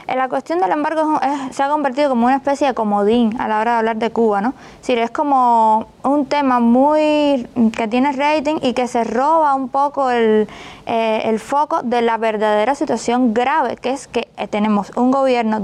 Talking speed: 200 wpm